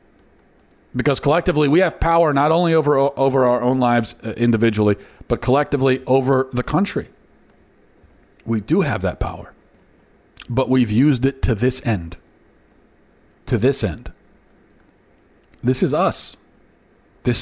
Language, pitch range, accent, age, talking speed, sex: English, 110-155 Hz, American, 40-59, 130 wpm, male